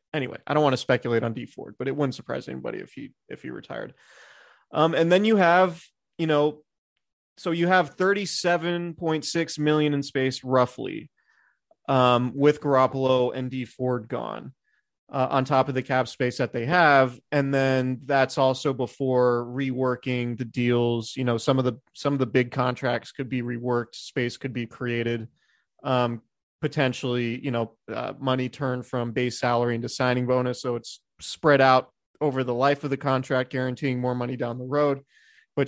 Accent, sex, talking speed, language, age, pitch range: American, male, 185 wpm, English, 30-49, 125-145 Hz